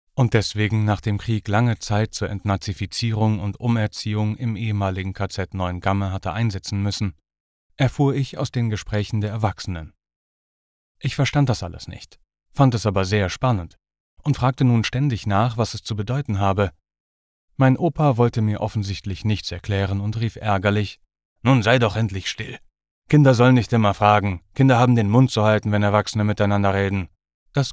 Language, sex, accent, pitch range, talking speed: German, male, German, 100-120 Hz, 165 wpm